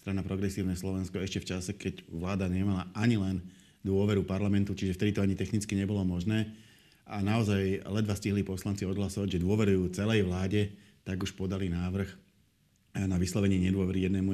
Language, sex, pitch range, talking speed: Slovak, male, 95-110 Hz, 160 wpm